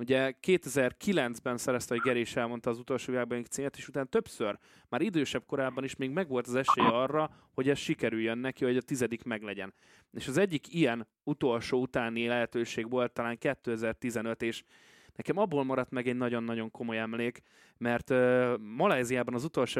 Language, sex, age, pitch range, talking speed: Hungarian, male, 20-39, 120-135 Hz, 160 wpm